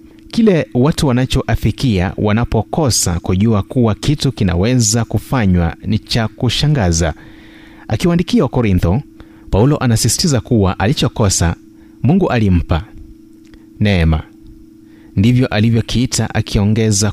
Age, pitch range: 30-49, 100-140 Hz